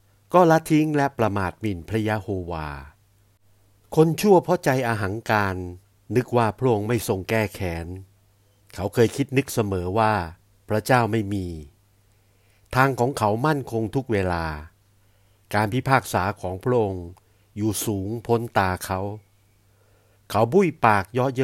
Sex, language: male, Thai